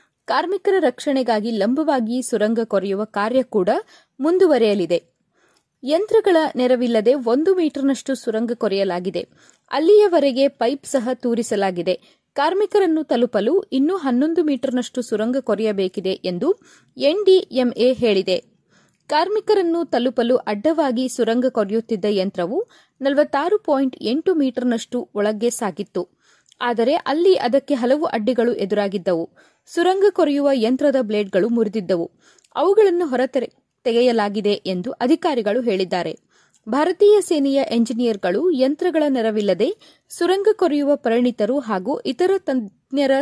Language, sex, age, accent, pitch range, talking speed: Kannada, female, 30-49, native, 215-305 Hz, 90 wpm